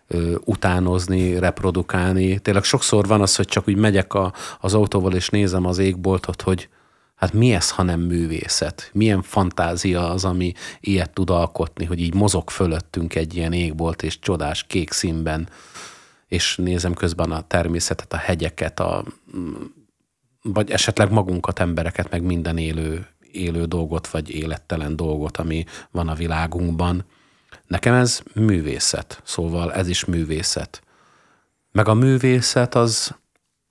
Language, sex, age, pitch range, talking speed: Hungarian, male, 30-49, 85-100 Hz, 135 wpm